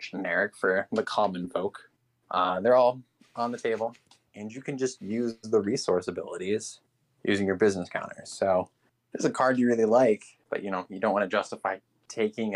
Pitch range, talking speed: 100-125 Hz, 190 wpm